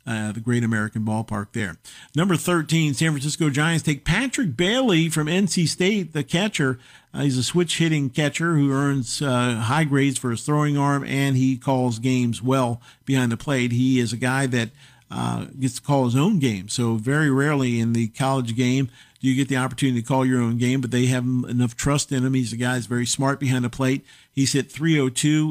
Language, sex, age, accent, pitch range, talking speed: English, male, 50-69, American, 120-140 Hz, 205 wpm